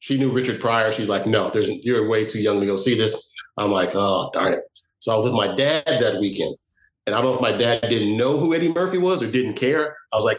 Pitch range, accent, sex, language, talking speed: 110-160 Hz, American, male, English, 275 wpm